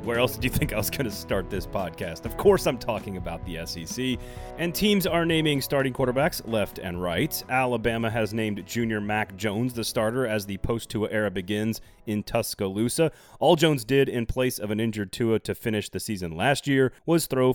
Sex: male